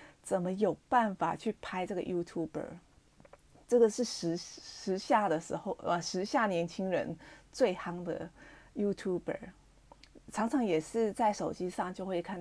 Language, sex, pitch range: Chinese, female, 165-210 Hz